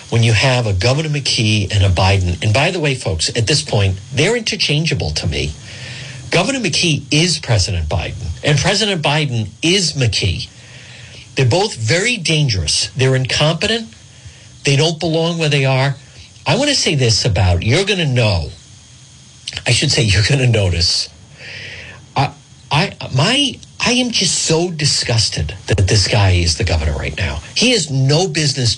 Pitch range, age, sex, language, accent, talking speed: 105-160 Hz, 50-69, male, English, American, 160 wpm